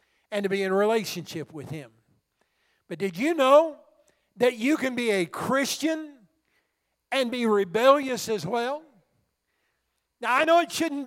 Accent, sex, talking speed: American, male, 145 wpm